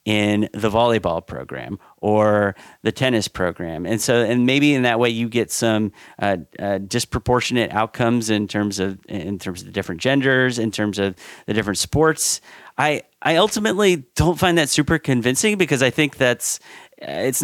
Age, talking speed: 30-49, 170 wpm